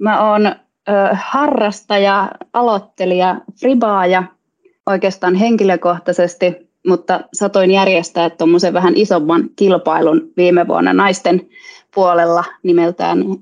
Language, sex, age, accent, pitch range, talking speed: Finnish, female, 20-39, native, 175-245 Hz, 90 wpm